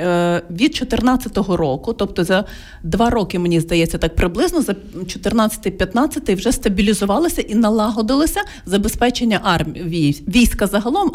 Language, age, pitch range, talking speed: Ukrainian, 40-59, 180-240 Hz, 115 wpm